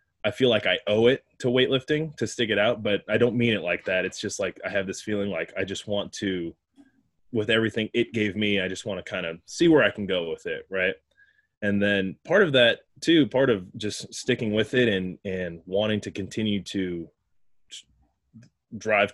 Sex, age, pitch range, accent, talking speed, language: male, 20-39, 95-115 Hz, American, 215 wpm, English